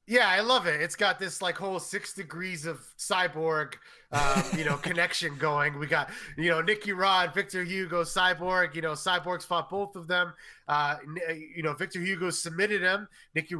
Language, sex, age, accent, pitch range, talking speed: English, male, 20-39, American, 160-190 Hz, 185 wpm